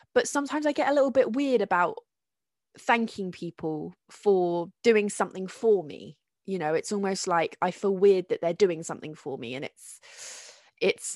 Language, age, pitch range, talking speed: English, 20-39, 180-220 Hz, 175 wpm